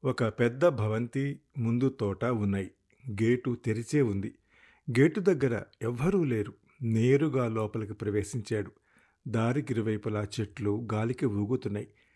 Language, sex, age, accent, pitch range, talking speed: Telugu, male, 50-69, native, 110-140 Hz, 100 wpm